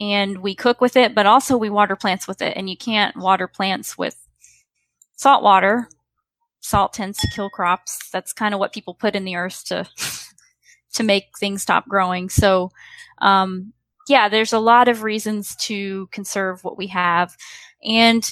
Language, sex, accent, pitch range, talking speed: English, female, American, 190-235 Hz, 175 wpm